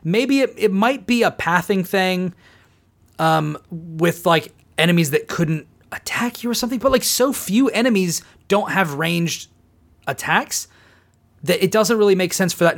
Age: 30-49